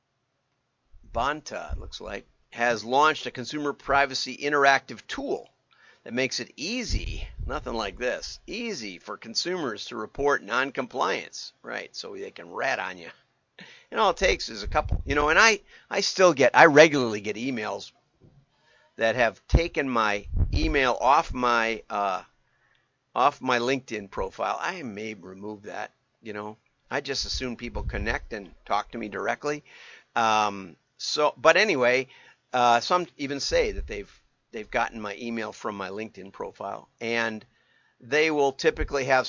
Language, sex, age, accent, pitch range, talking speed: English, male, 50-69, American, 110-140 Hz, 155 wpm